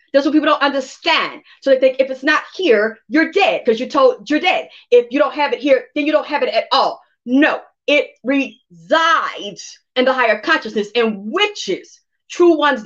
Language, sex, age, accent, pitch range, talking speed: English, female, 40-59, American, 255-320 Hz, 200 wpm